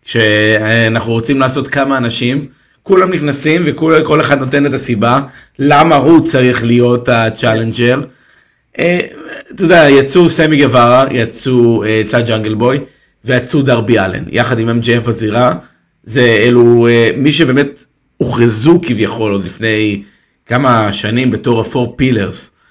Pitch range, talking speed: 110-135 Hz, 115 wpm